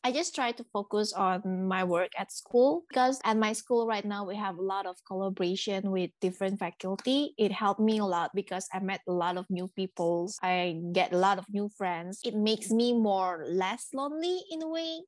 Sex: female